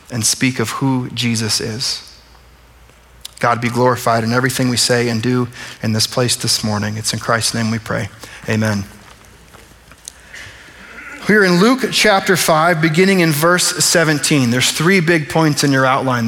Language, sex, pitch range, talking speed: English, male, 120-170 Hz, 160 wpm